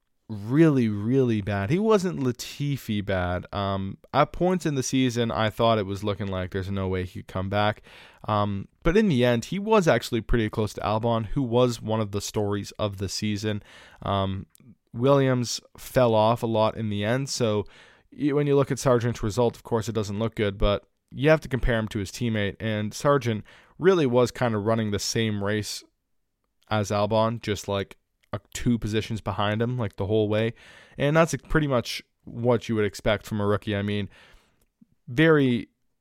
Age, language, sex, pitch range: 20-39, English, male, 100-120 Hz